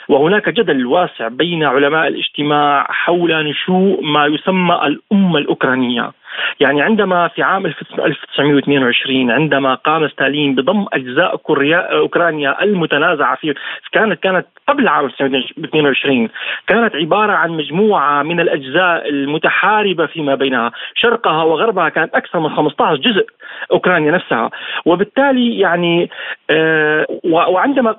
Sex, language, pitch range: male, Arabic, 160-220 Hz